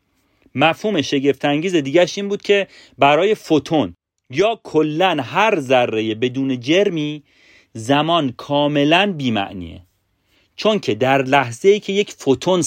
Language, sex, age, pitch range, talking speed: Persian, male, 40-59, 105-155 Hz, 120 wpm